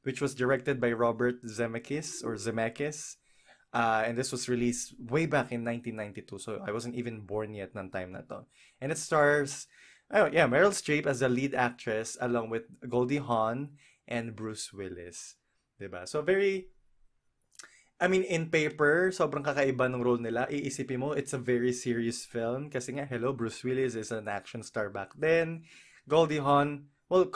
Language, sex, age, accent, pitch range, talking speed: Filipino, male, 20-39, native, 115-145 Hz, 175 wpm